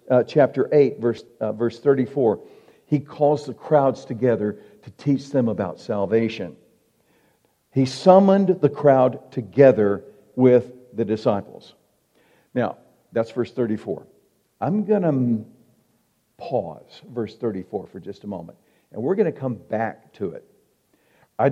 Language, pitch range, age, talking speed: English, 115-140 Hz, 50-69, 135 wpm